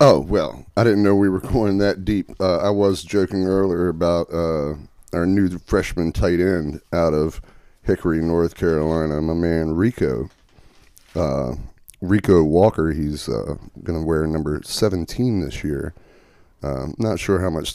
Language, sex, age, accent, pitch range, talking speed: English, male, 30-49, American, 80-100 Hz, 160 wpm